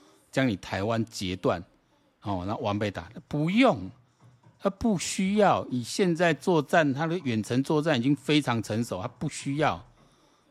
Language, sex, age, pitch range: Chinese, male, 50-69, 105-140 Hz